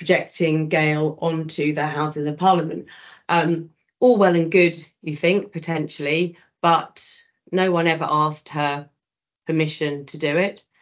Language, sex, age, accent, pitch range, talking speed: English, female, 30-49, British, 150-170 Hz, 140 wpm